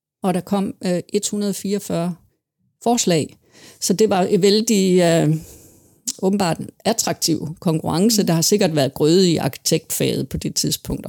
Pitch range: 160-195 Hz